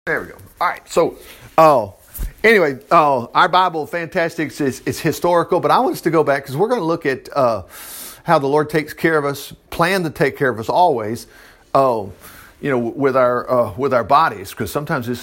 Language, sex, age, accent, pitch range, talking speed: English, male, 50-69, American, 140-195 Hz, 220 wpm